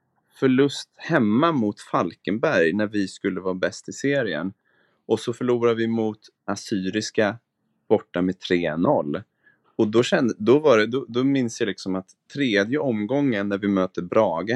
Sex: male